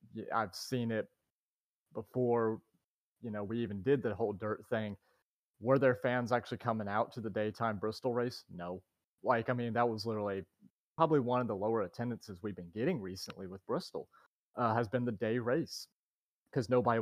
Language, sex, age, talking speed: English, male, 30-49, 180 wpm